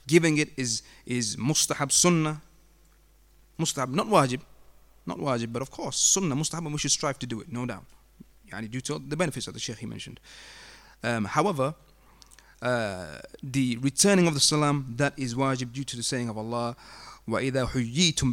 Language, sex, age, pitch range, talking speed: English, male, 30-49, 120-155 Hz, 180 wpm